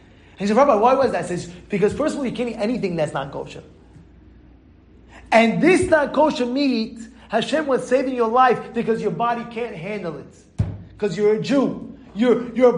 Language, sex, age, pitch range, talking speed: English, male, 30-49, 225-295 Hz, 190 wpm